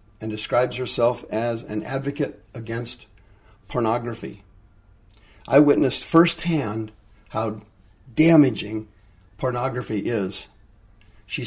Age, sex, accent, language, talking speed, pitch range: 50-69, male, American, English, 85 wpm, 105-140 Hz